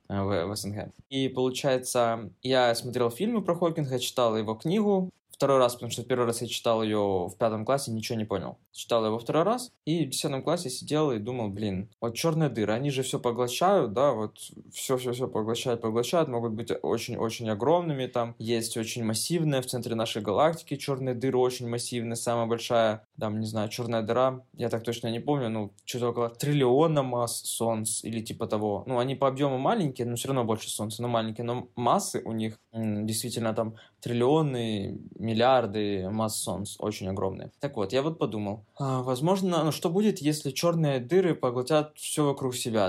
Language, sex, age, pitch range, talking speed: Russian, male, 20-39, 110-135 Hz, 180 wpm